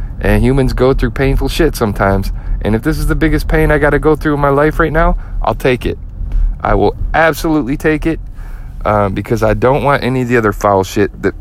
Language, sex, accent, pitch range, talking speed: English, male, American, 95-120 Hz, 225 wpm